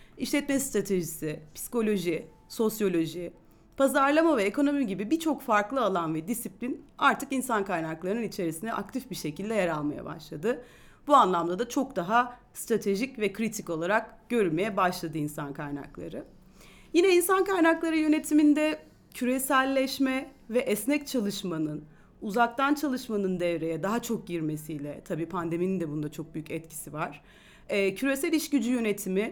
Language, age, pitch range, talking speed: Turkish, 40-59, 180-270 Hz, 125 wpm